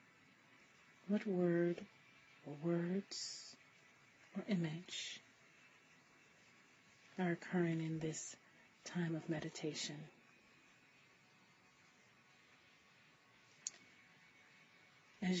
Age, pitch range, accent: 40-59, 165-190 Hz, American